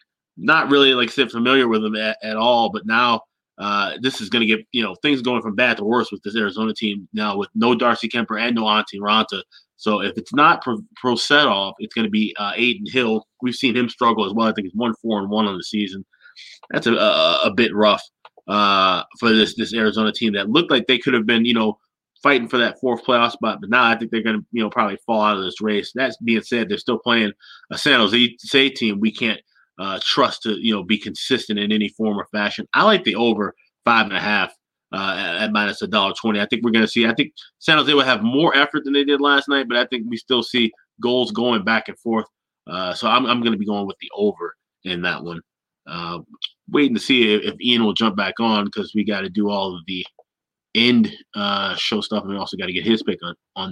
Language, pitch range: English, 105-120 Hz